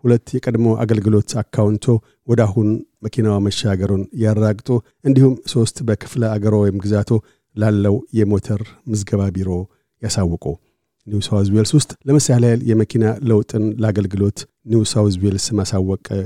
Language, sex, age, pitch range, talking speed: Amharic, male, 50-69, 105-115 Hz, 105 wpm